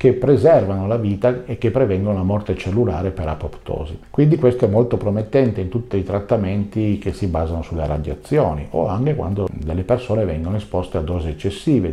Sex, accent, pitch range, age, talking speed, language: male, native, 95-125 Hz, 50-69, 180 wpm, Italian